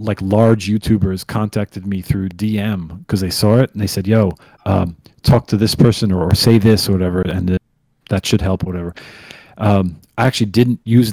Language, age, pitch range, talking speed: English, 40-59, 100-125 Hz, 200 wpm